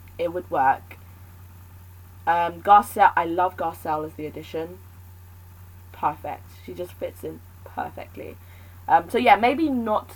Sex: female